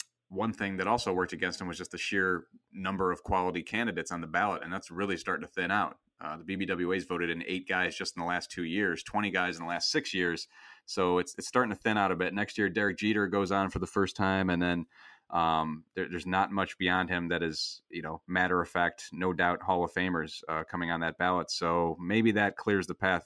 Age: 30-49